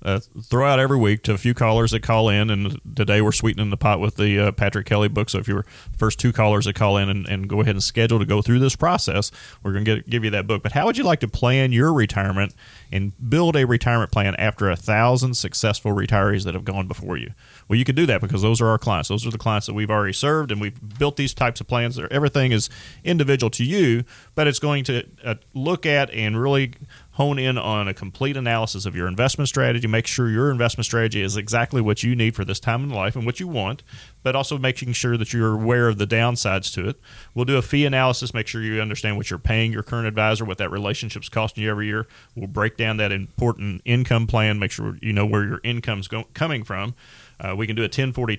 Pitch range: 105-125 Hz